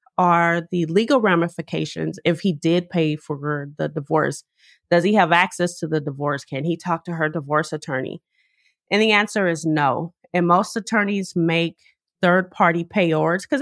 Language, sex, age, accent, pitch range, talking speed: English, female, 30-49, American, 155-195 Hz, 165 wpm